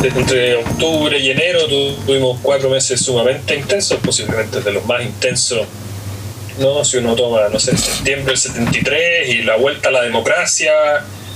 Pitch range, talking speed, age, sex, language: 110-175 Hz, 155 wpm, 30-49, male, Spanish